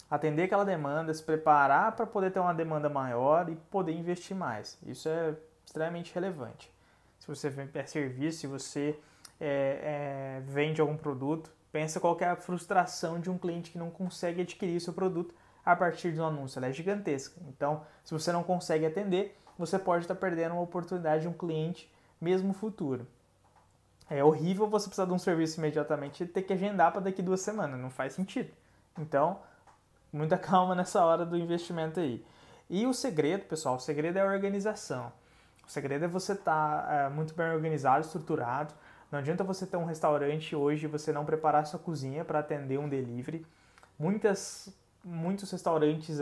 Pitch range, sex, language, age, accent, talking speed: 145-180 Hz, male, Portuguese, 20-39, Brazilian, 175 wpm